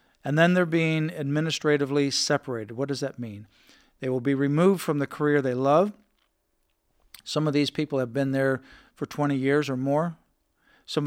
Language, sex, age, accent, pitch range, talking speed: English, male, 50-69, American, 135-150 Hz, 175 wpm